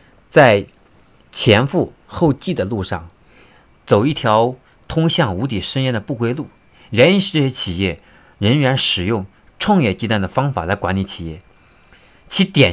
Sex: male